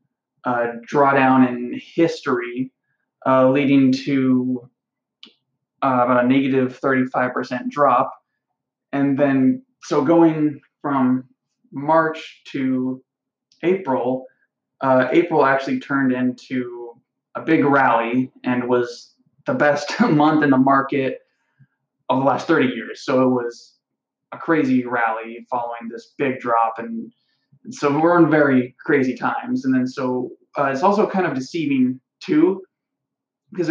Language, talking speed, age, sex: English, 125 wpm, 20-39, male